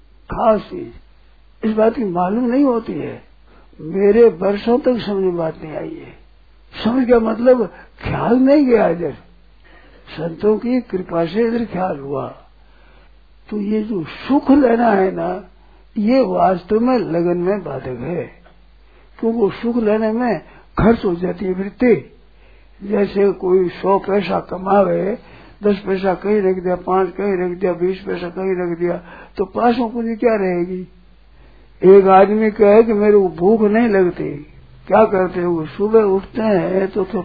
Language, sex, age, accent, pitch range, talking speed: Hindi, male, 60-79, native, 175-215 Hz, 155 wpm